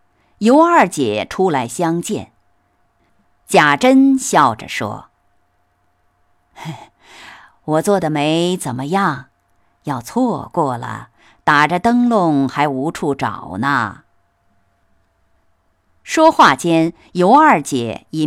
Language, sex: Chinese, female